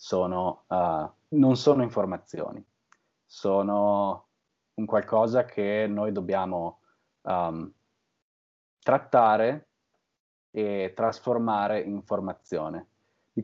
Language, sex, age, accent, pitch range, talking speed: Italian, male, 30-49, native, 90-110 Hz, 80 wpm